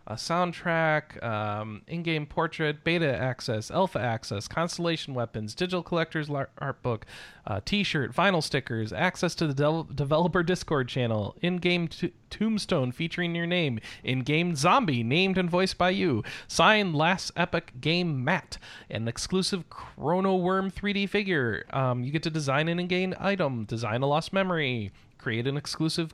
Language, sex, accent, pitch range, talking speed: English, male, American, 125-180 Hz, 150 wpm